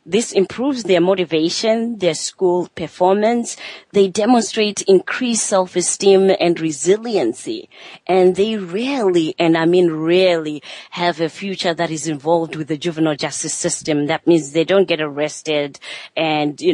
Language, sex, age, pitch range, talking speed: English, female, 30-49, 150-185 Hz, 140 wpm